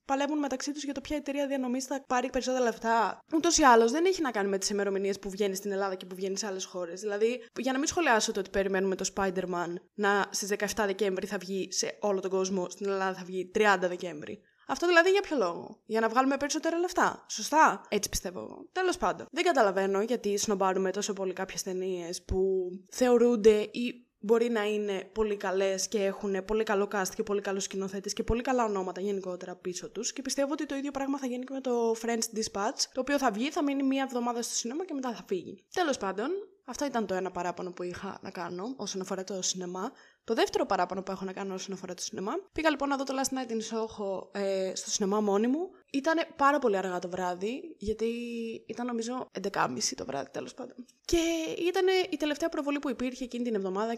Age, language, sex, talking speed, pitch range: 20-39, Greek, female, 220 wpm, 195-275 Hz